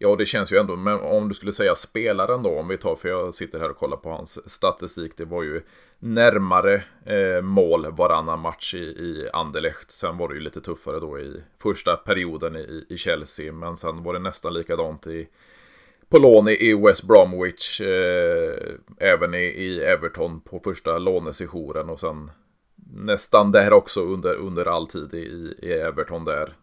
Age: 30-49